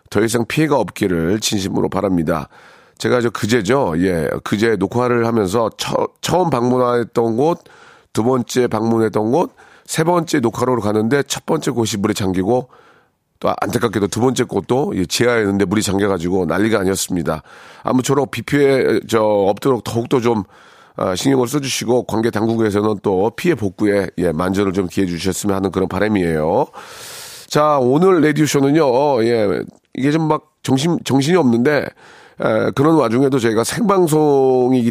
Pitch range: 105-145 Hz